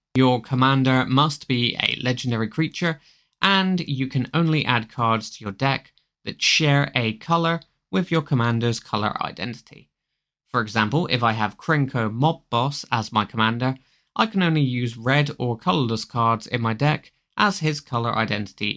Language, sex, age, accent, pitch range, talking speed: English, male, 20-39, British, 115-150 Hz, 165 wpm